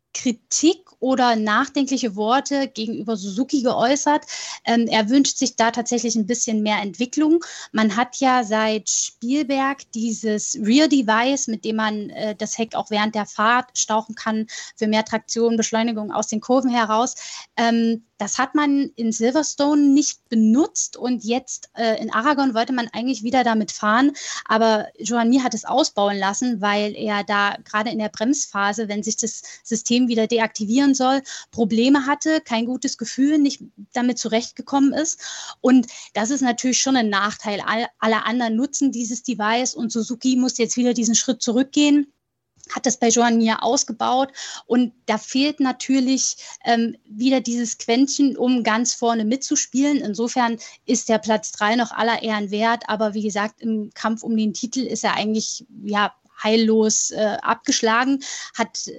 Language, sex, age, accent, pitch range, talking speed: German, female, 10-29, German, 220-260 Hz, 155 wpm